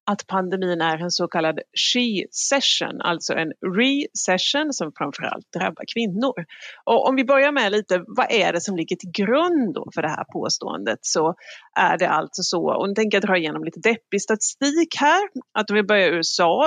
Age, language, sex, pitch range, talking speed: 30-49, Swedish, female, 170-235 Hz, 190 wpm